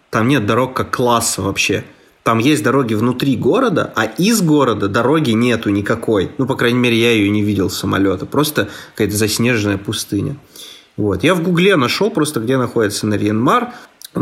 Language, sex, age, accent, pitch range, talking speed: Russian, male, 30-49, native, 110-140 Hz, 170 wpm